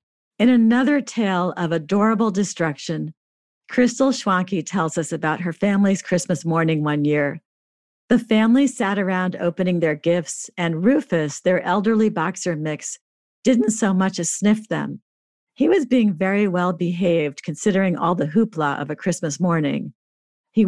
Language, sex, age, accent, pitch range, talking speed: English, female, 50-69, American, 160-210 Hz, 150 wpm